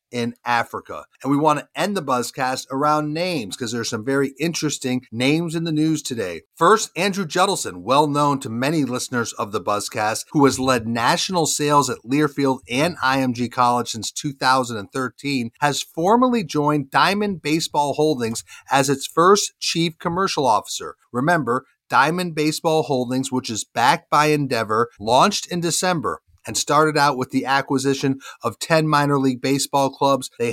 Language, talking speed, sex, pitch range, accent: English, 160 wpm, male, 125-150 Hz, American